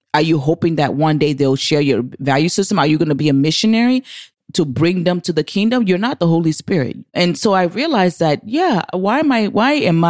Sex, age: female, 30-49